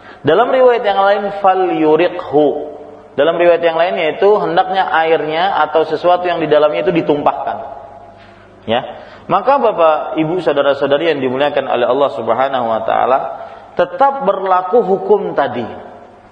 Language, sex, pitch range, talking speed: Malay, male, 140-190 Hz, 130 wpm